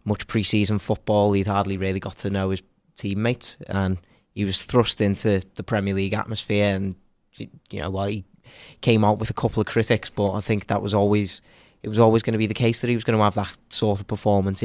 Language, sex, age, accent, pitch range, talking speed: English, male, 20-39, British, 95-110 Hz, 235 wpm